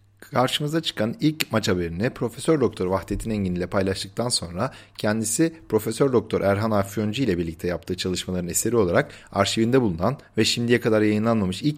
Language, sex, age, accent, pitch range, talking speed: Turkish, male, 40-59, native, 95-125 Hz, 155 wpm